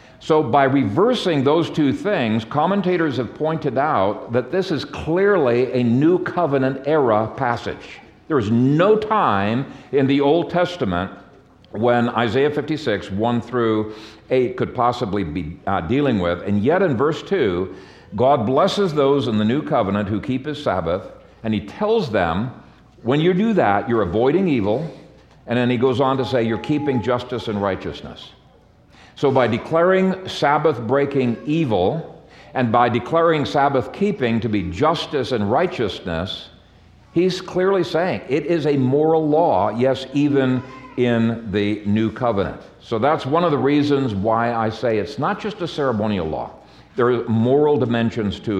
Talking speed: 155 wpm